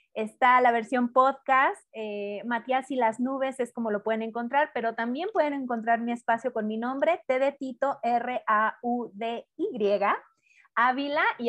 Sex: female